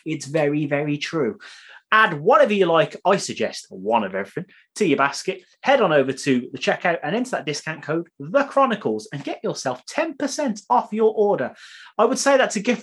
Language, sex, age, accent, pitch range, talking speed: English, male, 30-49, British, 130-185 Hz, 195 wpm